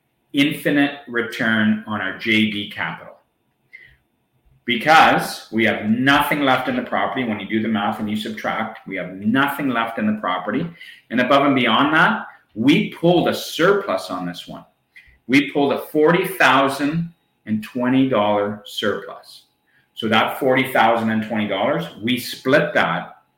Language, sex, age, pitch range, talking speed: English, male, 40-59, 105-130 Hz, 135 wpm